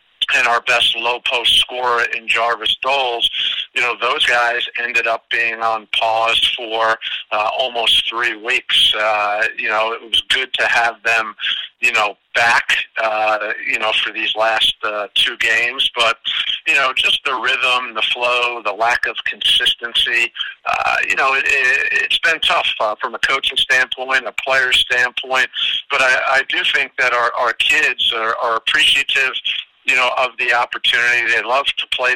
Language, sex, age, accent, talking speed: English, male, 50-69, American, 170 wpm